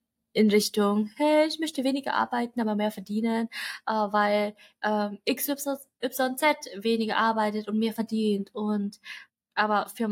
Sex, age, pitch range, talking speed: female, 20-39, 205-255 Hz, 130 wpm